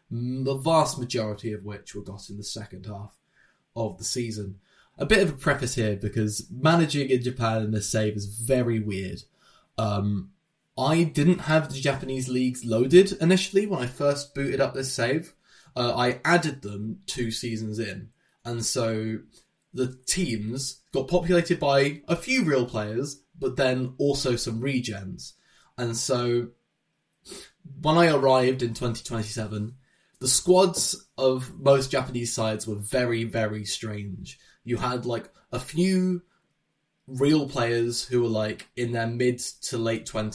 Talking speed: 150 wpm